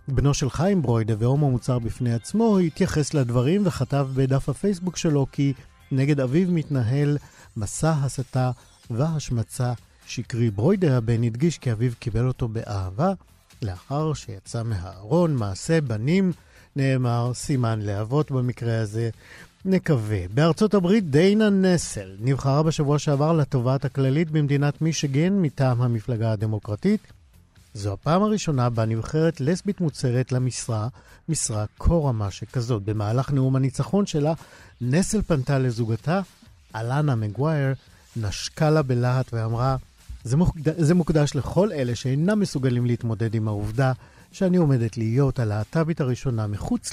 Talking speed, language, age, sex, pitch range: 120 wpm, Hebrew, 50-69, male, 115-155 Hz